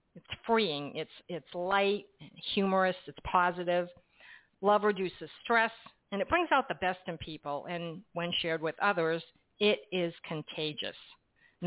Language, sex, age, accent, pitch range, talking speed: English, female, 50-69, American, 165-205 Hz, 145 wpm